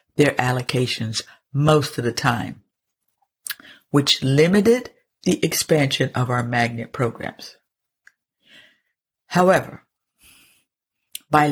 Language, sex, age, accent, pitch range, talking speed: English, female, 60-79, American, 140-190 Hz, 85 wpm